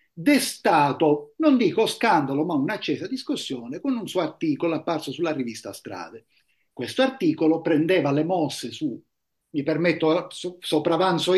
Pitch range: 150-245 Hz